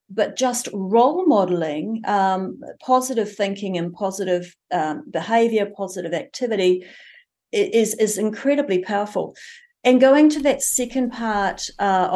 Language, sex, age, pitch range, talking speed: English, female, 40-59, 185-230 Hz, 120 wpm